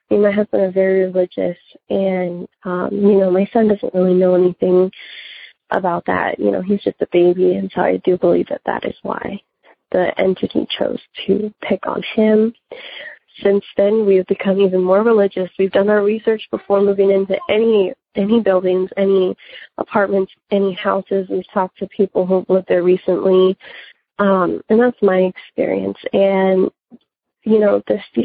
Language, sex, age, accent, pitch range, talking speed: English, female, 20-39, American, 180-205 Hz, 165 wpm